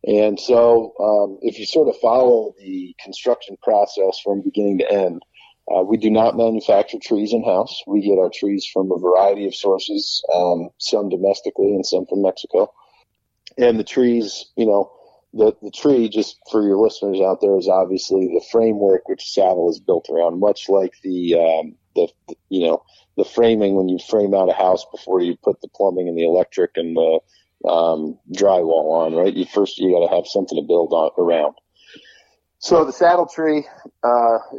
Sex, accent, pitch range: male, American, 95-115 Hz